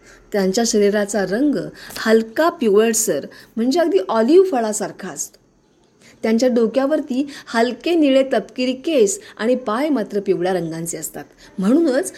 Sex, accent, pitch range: female, native, 205-290 Hz